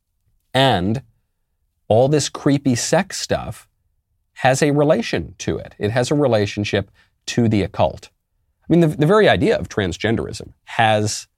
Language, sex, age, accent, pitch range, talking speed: English, male, 30-49, American, 90-115 Hz, 140 wpm